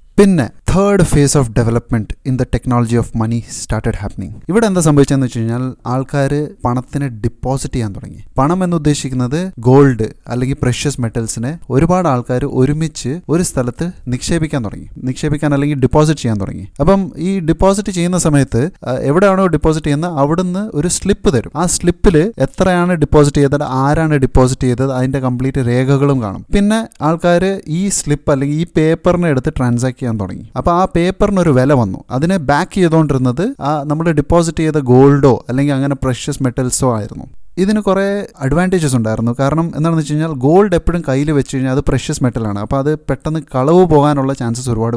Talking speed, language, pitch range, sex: 160 wpm, Malayalam, 130-165 Hz, male